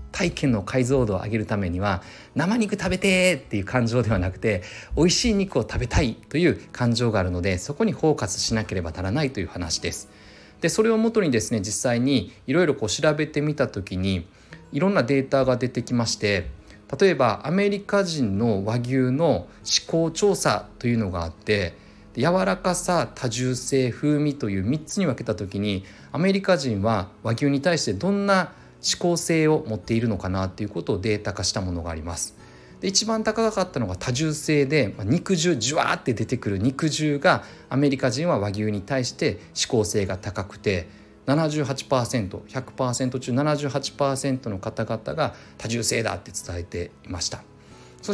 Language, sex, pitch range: Japanese, male, 105-150 Hz